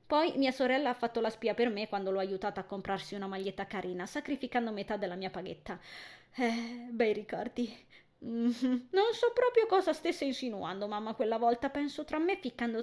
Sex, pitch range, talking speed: female, 200-270 Hz, 185 wpm